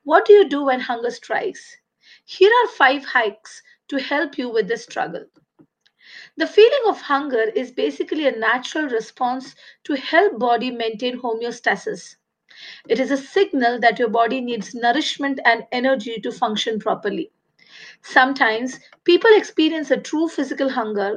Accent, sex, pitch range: Indian, female, 235-310 Hz